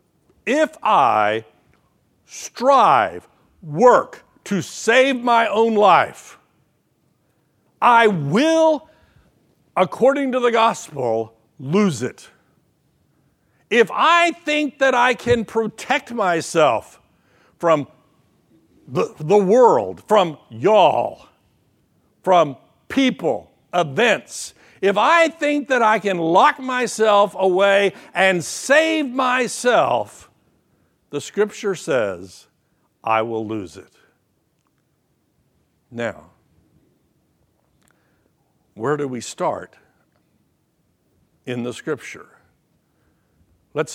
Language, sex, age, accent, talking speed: English, male, 60-79, American, 85 wpm